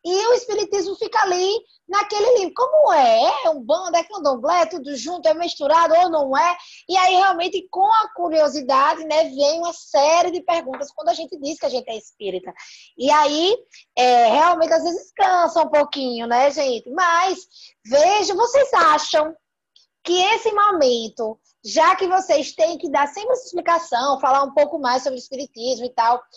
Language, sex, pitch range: Portuguese, female, 280-365 Hz